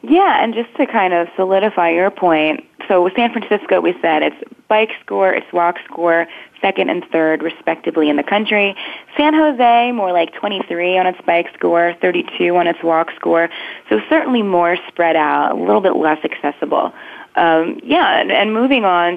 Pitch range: 160-205 Hz